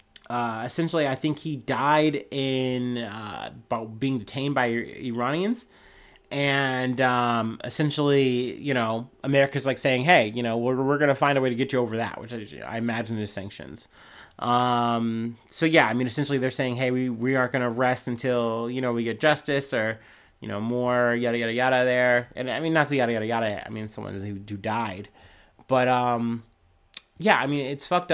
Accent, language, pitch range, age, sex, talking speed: American, English, 115-140 Hz, 30-49, male, 200 wpm